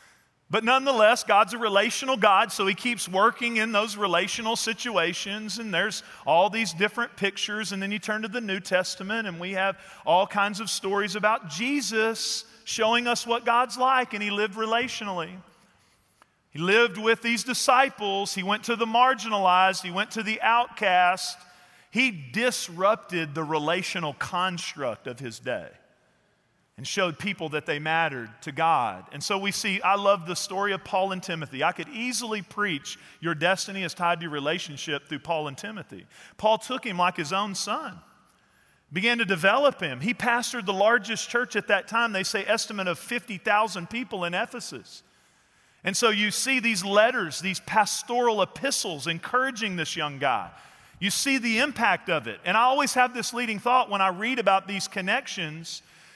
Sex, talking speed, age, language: male, 175 wpm, 40-59, English